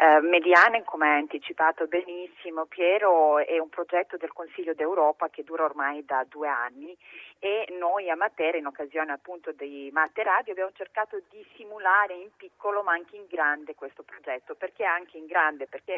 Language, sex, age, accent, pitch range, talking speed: Italian, female, 30-49, native, 155-200 Hz, 170 wpm